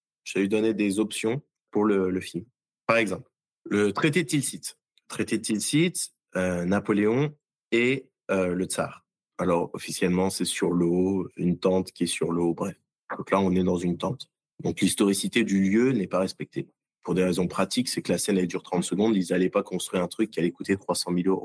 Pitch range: 90-105 Hz